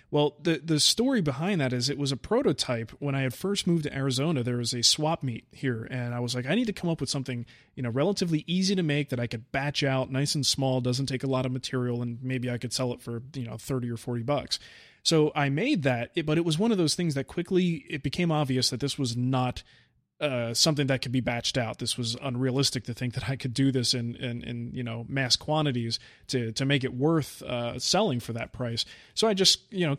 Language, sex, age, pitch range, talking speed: English, male, 30-49, 125-150 Hz, 255 wpm